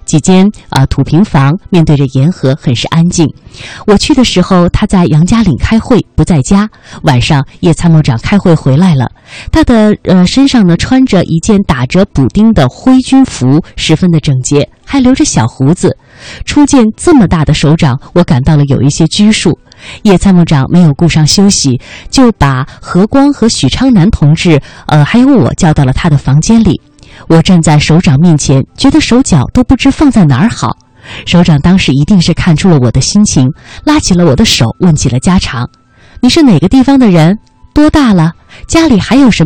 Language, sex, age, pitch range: Chinese, female, 20-39, 140-210 Hz